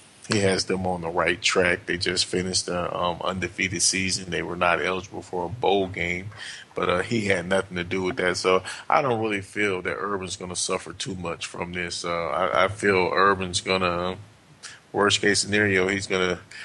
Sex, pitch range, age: male, 95-105 Hz, 20-39